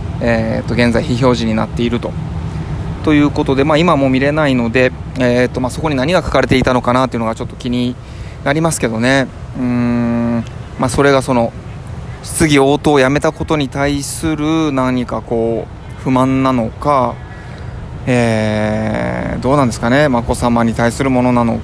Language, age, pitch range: Japanese, 20-39, 115-135 Hz